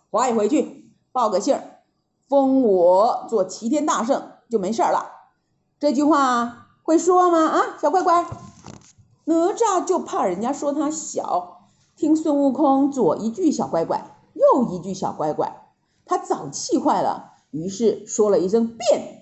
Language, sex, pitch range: Chinese, female, 225-335 Hz